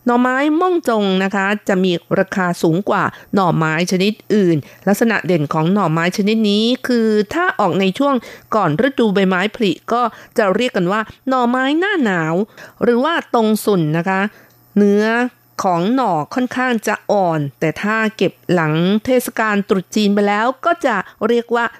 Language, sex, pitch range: Thai, female, 175-235 Hz